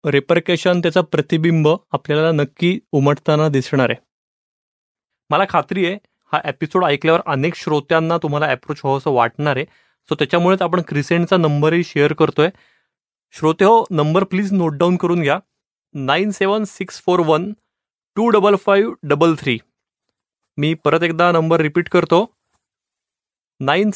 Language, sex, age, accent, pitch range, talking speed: Marathi, male, 30-49, native, 150-190 Hz, 120 wpm